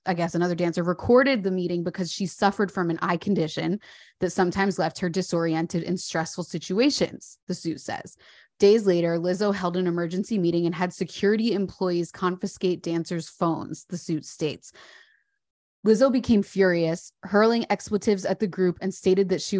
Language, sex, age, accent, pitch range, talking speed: English, female, 20-39, American, 170-200 Hz, 165 wpm